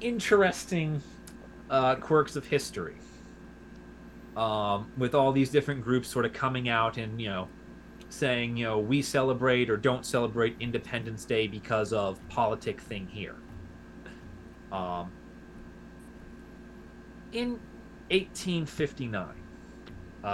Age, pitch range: 30-49, 115-185 Hz